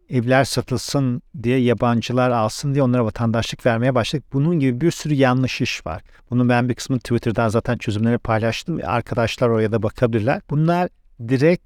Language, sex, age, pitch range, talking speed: Turkish, male, 50-69, 115-140 Hz, 160 wpm